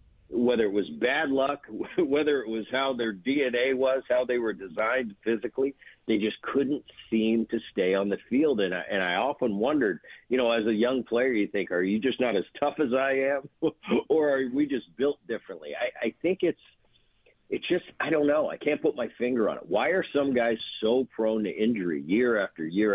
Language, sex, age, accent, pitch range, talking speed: English, male, 50-69, American, 110-135 Hz, 210 wpm